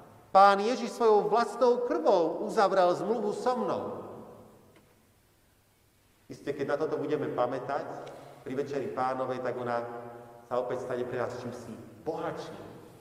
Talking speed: 125 wpm